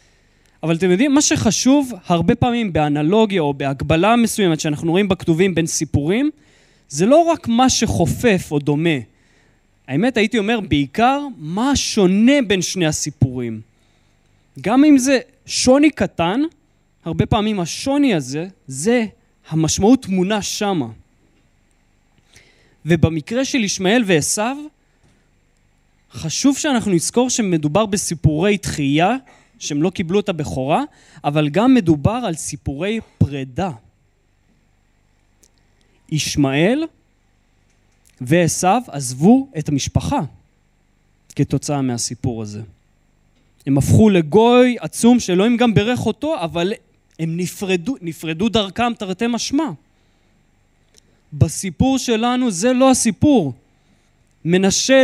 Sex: male